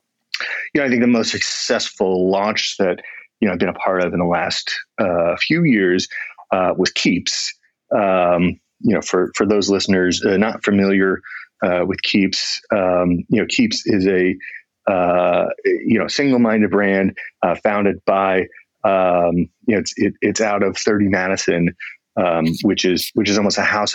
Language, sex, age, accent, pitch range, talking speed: English, male, 30-49, American, 90-105 Hz, 180 wpm